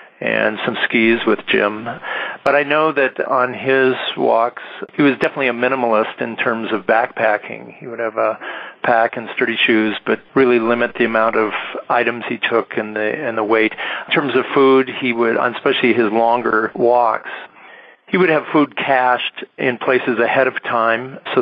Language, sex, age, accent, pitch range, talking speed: English, male, 50-69, American, 110-120 Hz, 180 wpm